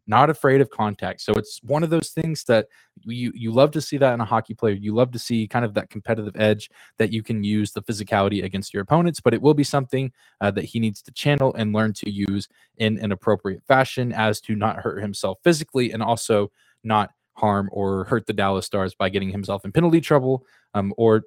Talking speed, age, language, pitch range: 230 wpm, 20-39, English, 100-120 Hz